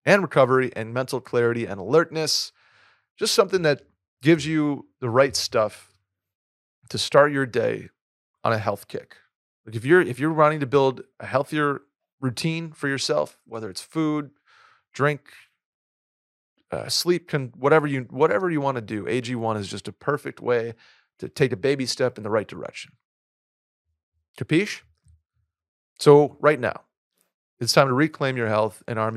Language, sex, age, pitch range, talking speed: English, male, 30-49, 110-150 Hz, 160 wpm